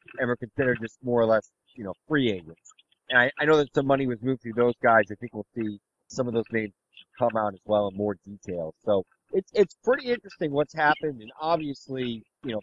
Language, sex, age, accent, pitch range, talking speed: English, male, 30-49, American, 105-140 Hz, 235 wpm